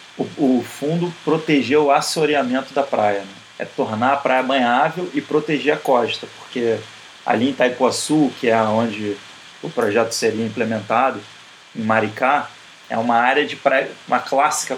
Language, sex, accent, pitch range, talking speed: Portuguese, male, Brazilian, 120-170 Hz, 150 wpm